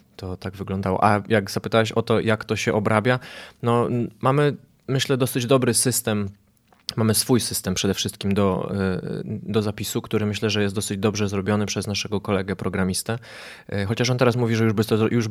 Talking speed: 170 wpm